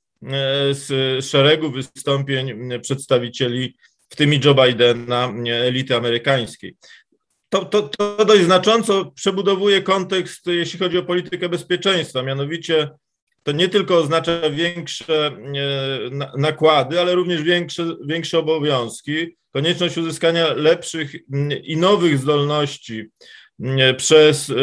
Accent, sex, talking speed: native, male, 100 wpm